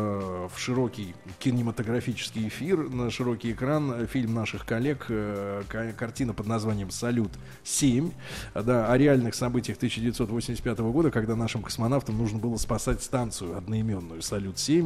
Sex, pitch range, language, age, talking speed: male, 110-125 Hz, Russian, 20-39, 115 wpm